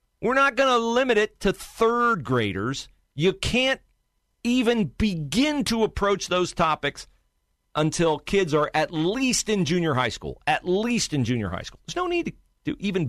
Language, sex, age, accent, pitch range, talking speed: English, male, 40-59, American, 100-150 Hz, 175 wpm